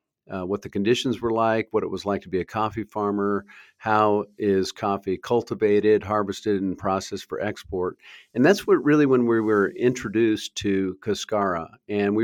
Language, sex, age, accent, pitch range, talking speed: English, male, 50-69, American, 95-115 Hz, 175 wpm